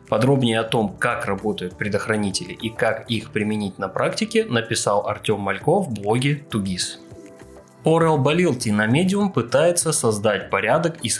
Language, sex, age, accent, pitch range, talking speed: Russian, male, 20-39, native, 110-165 Hz, 135 wpm